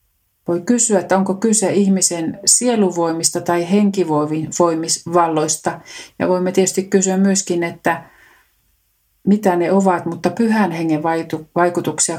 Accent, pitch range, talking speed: native, 160-190 Hz, 110 wpm